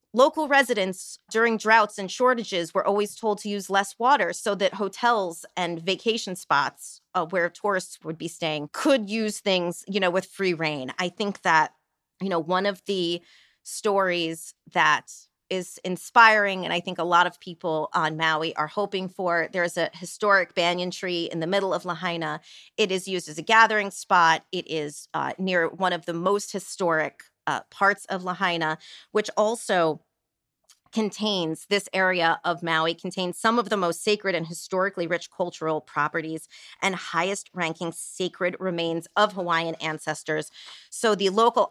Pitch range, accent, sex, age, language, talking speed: 170-205 Hz, American, female, 30-49, English, 165 wpm